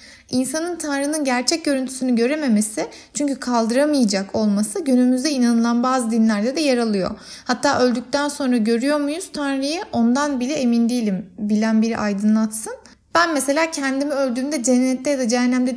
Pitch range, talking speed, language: 220-280 Hz, 135 wpm, Turkish